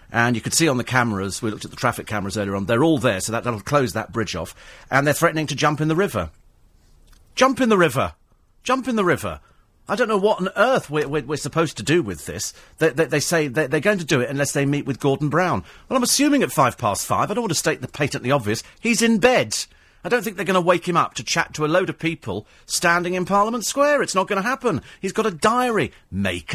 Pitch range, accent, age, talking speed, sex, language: 110-180 Hz, British, 40-59, 265 wpm, male, English